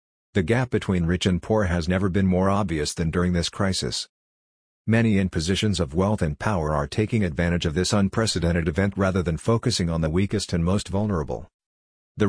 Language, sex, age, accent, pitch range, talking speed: English, male, 50-69, American, 85-105 Hz, 190 wpm